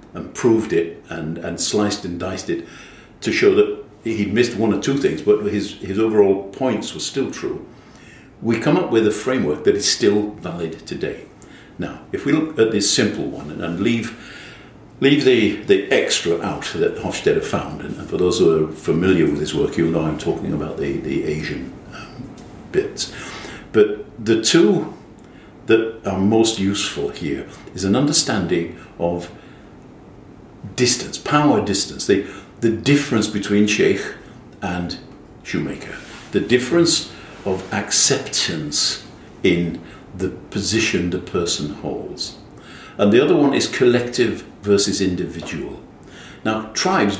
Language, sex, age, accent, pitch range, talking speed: English, male, 60-79, British, 100-135 Hz, 150 wpm